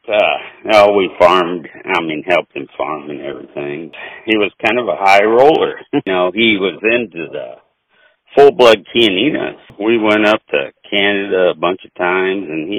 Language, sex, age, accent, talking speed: English, male, 60-79, American, 175 wpm